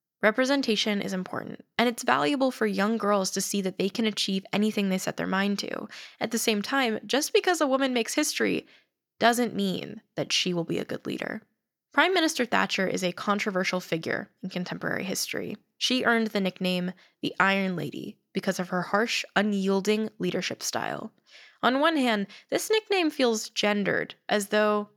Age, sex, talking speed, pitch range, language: 10-29, female, 175 wpm, 185-235 Hz, English